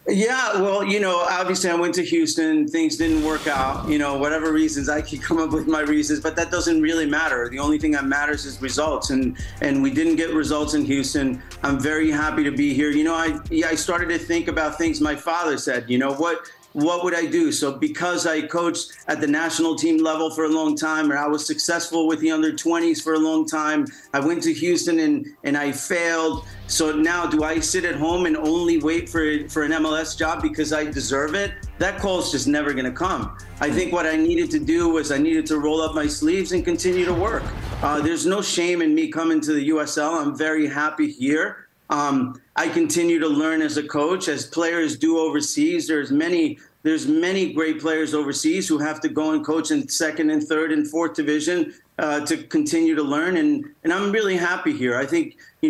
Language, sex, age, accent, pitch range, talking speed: English, male, 40-59, American, 150-185 Hz, 225 wpm